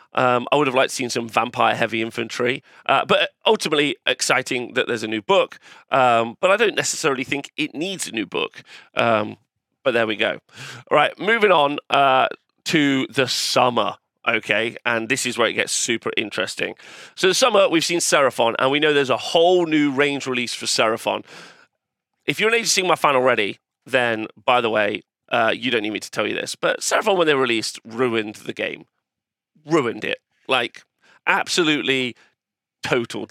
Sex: male